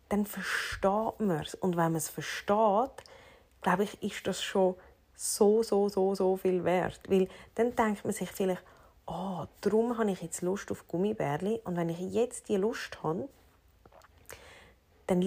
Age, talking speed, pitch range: 30-49, 170 wpm, 170-220 Hz